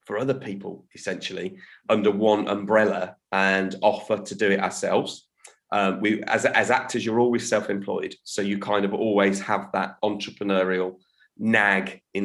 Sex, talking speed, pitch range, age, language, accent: male, 150 wpm, 95-110 Hz, 30-49, English, British